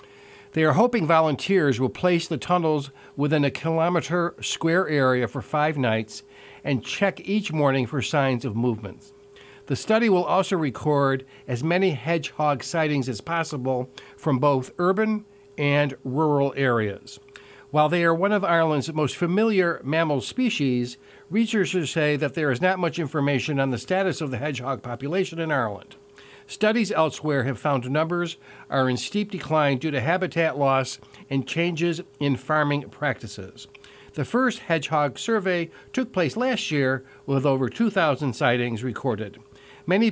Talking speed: 150 wpm